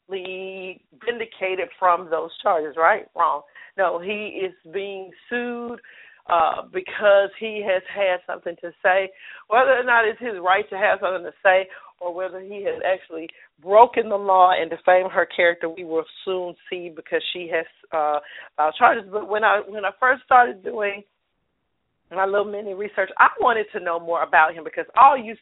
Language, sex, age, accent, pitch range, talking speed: English, female, 40-59, American, 175-215 Hz, 170 wpm